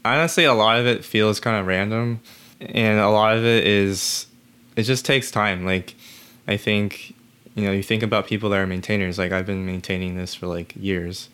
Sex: male